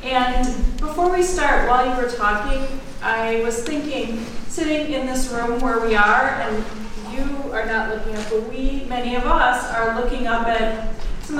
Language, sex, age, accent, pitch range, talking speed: English, female, 40-59, American, 220-255 Hz, 180 wpm